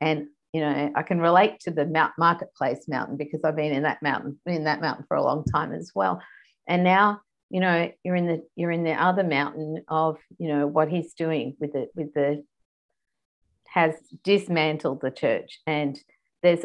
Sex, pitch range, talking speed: female, 155-190 Hz, 190 wpm